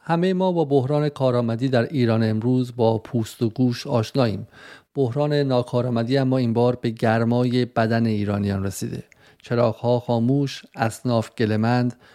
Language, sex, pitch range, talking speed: Persian, male, 110-130 Hz, 135 wpm